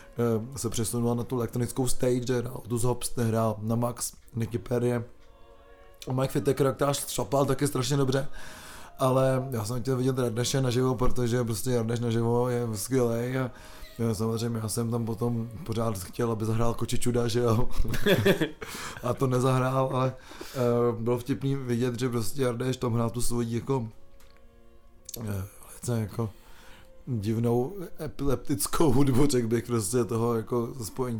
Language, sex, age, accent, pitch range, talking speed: Czech, male, 20-39, native, 115-130 Hz, 140 wpm